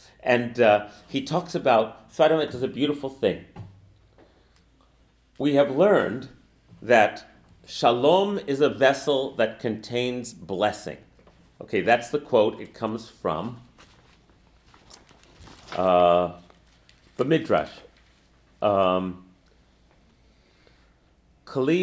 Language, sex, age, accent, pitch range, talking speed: English, male, 40-59, American, 95-140 Hz, 95 wpm